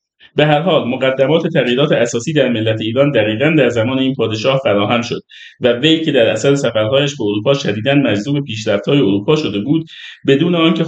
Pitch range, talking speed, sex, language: 110-145 Hz, 175 wpm, male, Persian